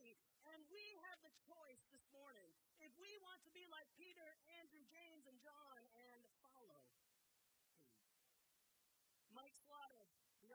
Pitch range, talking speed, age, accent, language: 235-330 Hz, 135 wpm, 50-69, American, English